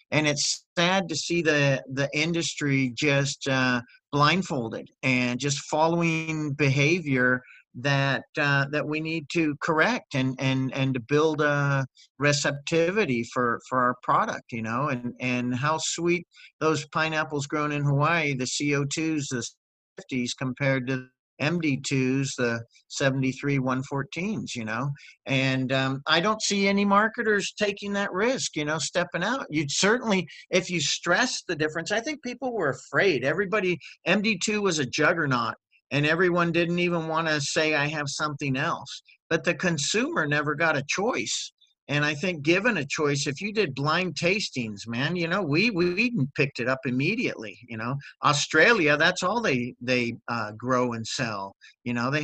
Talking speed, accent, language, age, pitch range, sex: 160 wpm, American, English, 50-69, 130-170 Hz, male